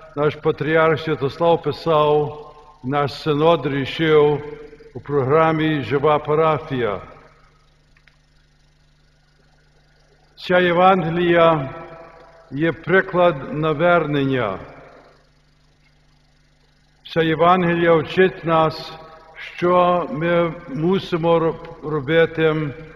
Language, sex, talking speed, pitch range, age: Ukrainian, male, 65 wpm, 150-170 Hz, 60-79